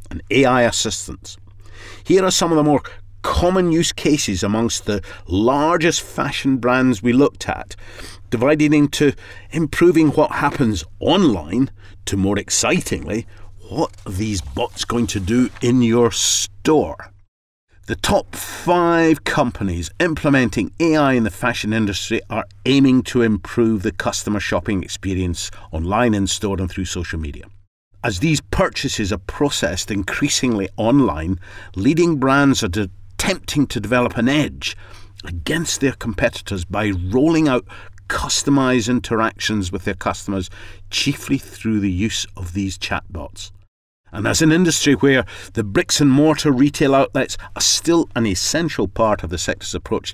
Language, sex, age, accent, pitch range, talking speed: English, male, 50-69, British, 95-130 Hz, 140 wpm